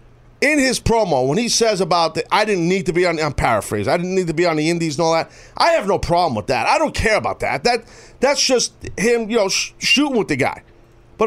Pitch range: 145-230 Hz